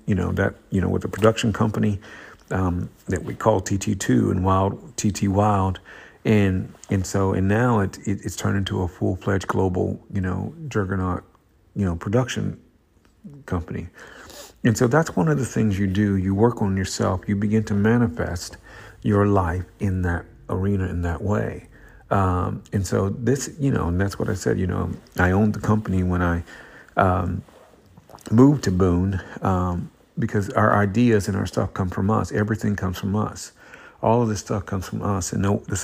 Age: 50-69